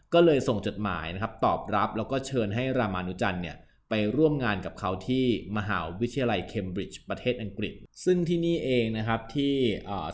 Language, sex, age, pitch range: Thai, male, 20-39, 100-125 Hz